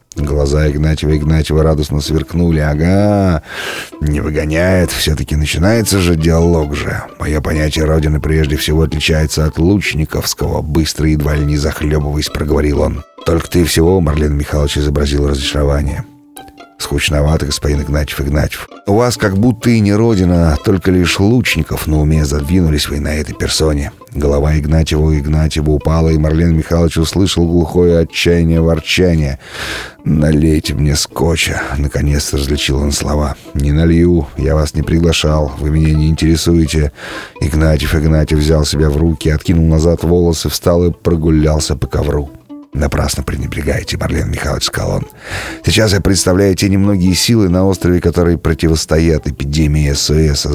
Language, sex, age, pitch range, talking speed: Russian, male, 30-49, 75-90 Hz, 140 wpm